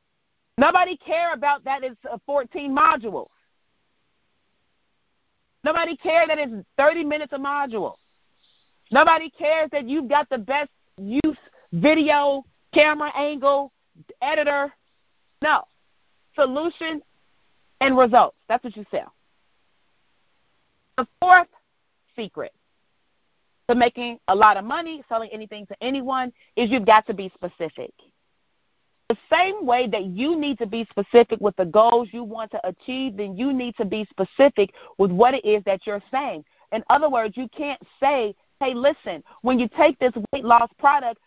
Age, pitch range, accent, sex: 30-49, 225-295 Hz, American, female